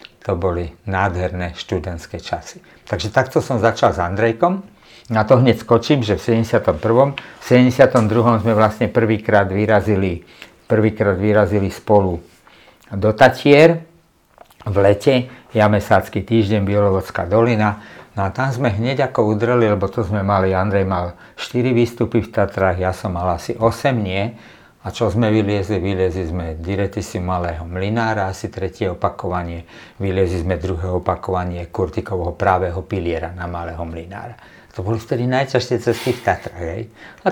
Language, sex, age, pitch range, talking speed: Czech, male, 50-69, 95-120 Hz, 145 wpm